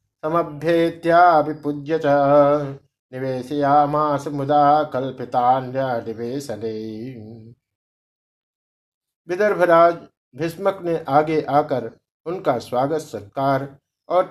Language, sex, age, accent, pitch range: Hindi, male, 50-69, native, 130-160 Hz